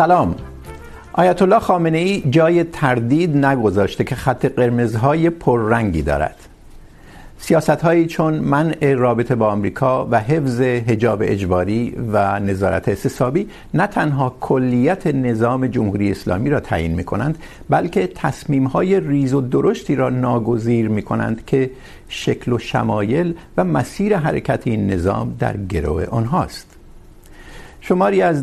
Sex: male